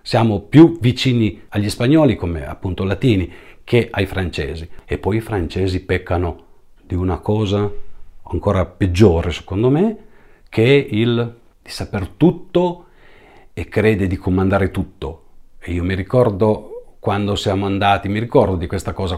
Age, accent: 40-59, Italian